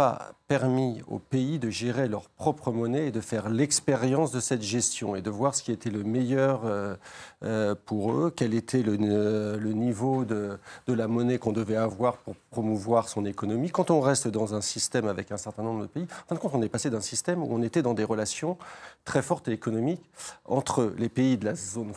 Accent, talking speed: French, 210 wpm